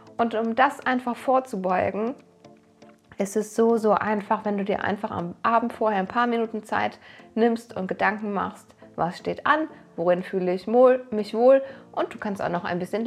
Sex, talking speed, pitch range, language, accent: female, 185 wpm, 215-255 Hz, German, German